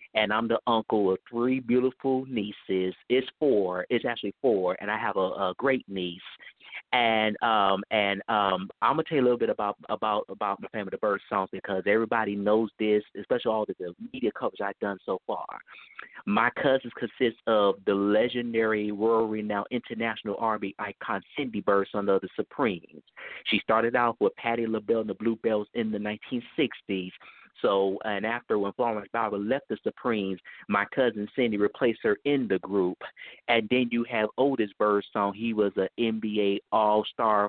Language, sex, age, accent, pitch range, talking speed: English, male, 30-49, American, 105-120 Hz, 175 wpm